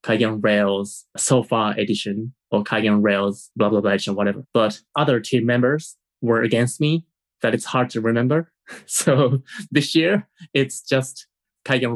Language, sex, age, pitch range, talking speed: English, male, 20-39, 105-135 Hz, 150 wpm